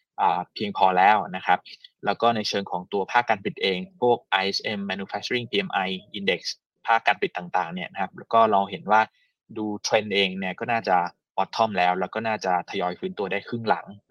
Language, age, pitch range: Thai, 20-39, 95-125 Hz